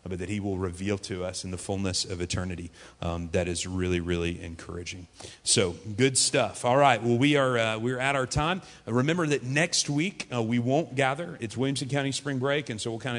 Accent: American